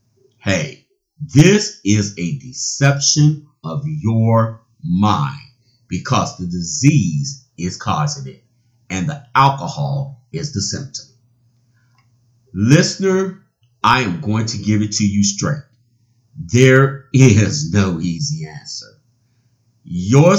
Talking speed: 105 wpm